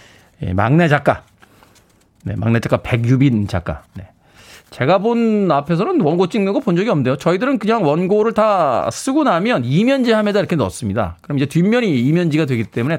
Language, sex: Korean, male